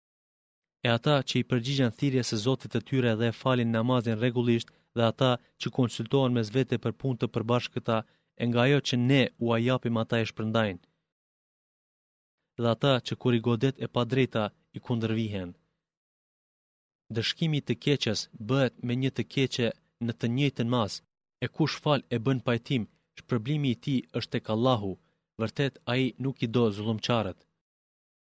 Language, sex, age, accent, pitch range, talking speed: Greek, male, 30-49, Turkish, 115-130 Hz, 160 wpm